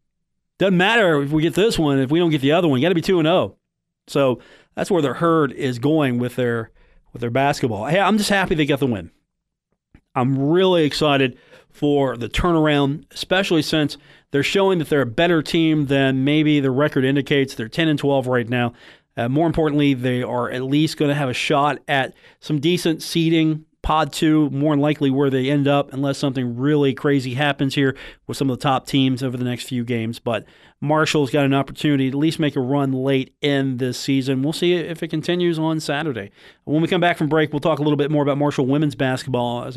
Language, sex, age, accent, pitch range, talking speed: English, male, 40-59, American, 135-160 Hz, 225 wpm